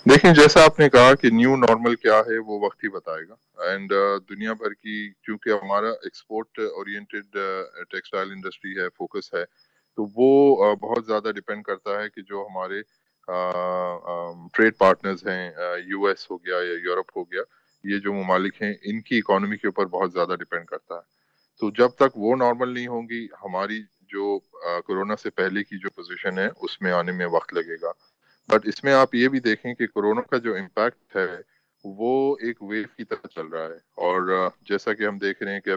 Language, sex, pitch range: Urdu, male, 100-125 Hz